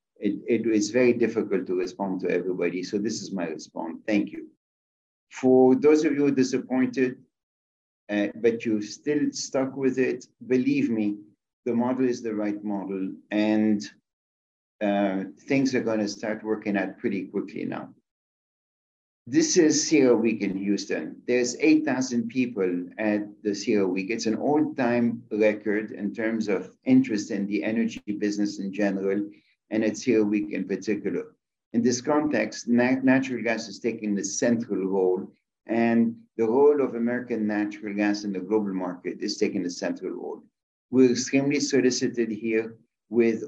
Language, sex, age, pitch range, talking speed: English, male, 50-69, 105-130 Hz, 155 wpm